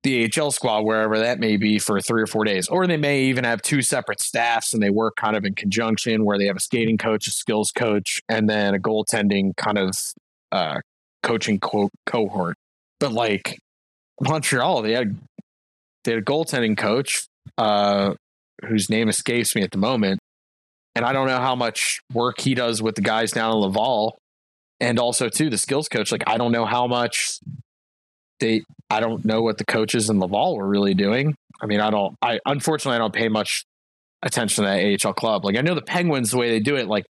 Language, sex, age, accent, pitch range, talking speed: English, male, 20-39, American, 105-125 Hz, 210 wpm